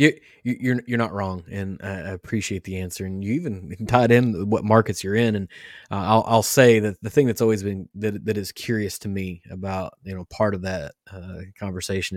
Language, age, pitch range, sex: English, 20-39, 95-115 Hz, male